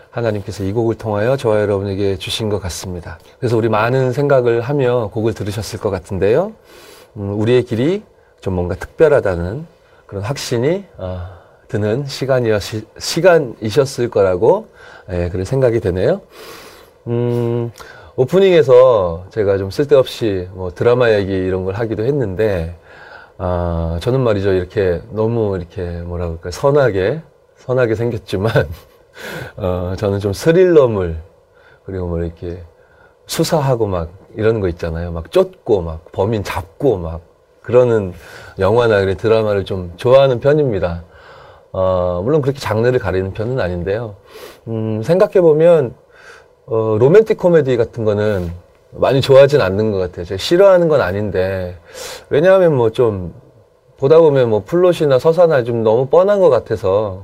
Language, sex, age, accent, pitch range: Korean, male, 30-49, native, 95-135 Hz